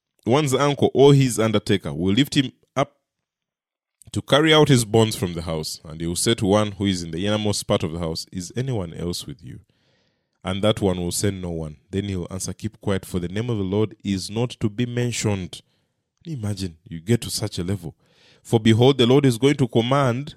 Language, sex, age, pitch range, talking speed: English, male, 30-49, 95-125 Hz, 225 wpm